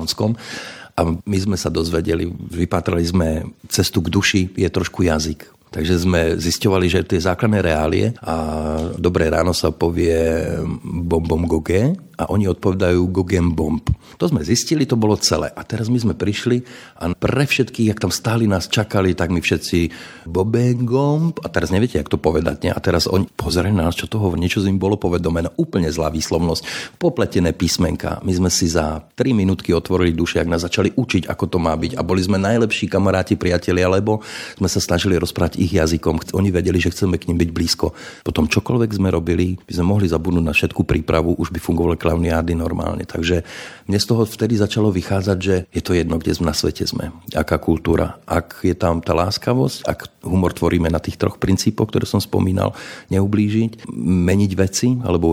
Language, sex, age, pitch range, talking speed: Slovak, male, 50-69, 85-100 Hz, 185 wpm